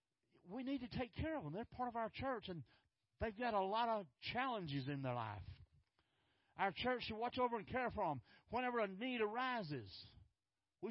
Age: 50-69